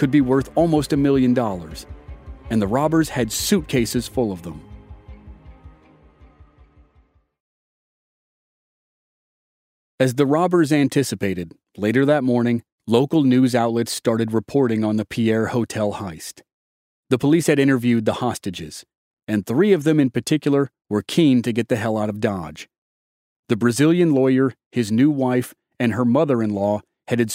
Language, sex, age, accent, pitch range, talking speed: English, male, 40-59, American, 105-135 Hz, 140 wpm